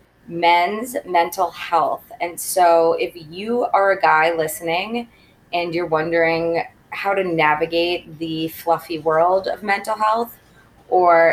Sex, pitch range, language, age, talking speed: female, 160-190 Hz, English, 20-39, 125 wpm